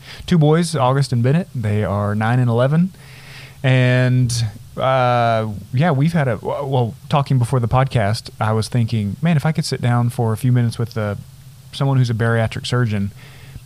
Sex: male